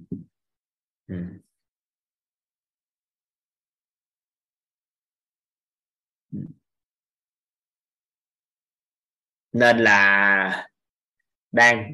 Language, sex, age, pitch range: Vietnamese, male, 20-39, 100-130 Hz